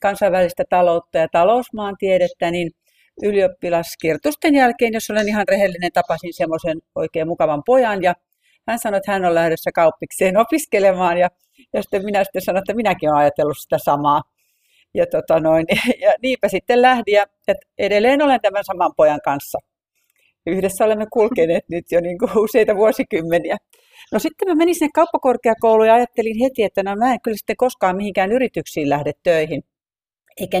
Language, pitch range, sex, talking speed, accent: Finnish, 170-230 Hz, female, 155 wpm, native